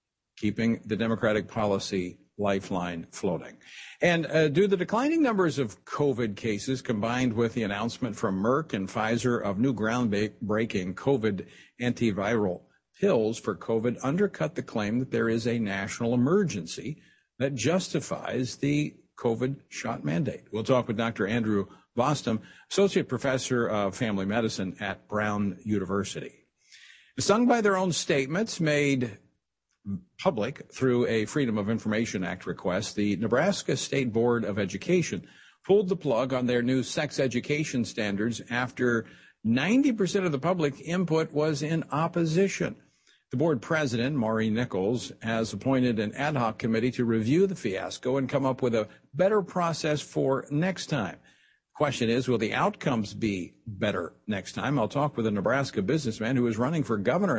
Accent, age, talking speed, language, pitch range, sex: American, 50-69, 150 wpm, English, 110-150 Hz, male